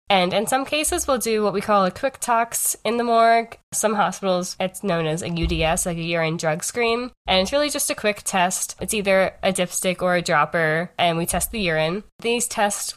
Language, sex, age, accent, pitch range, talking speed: English, female, 10-29, American, 165-200 Hz, 220 wpm